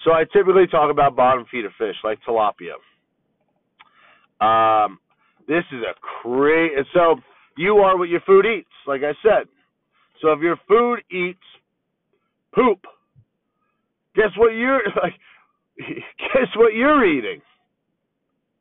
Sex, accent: male, American